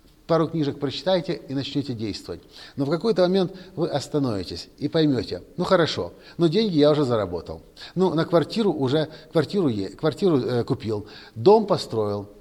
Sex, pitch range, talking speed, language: male, 120-170 Hz, 155 wpm, Russian